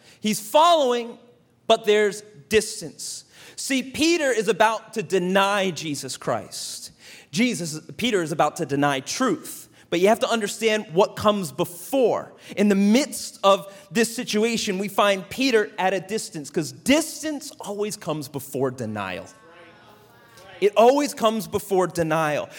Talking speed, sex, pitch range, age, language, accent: 135 wpm, male, 185-265 Hz, 30-49, English, American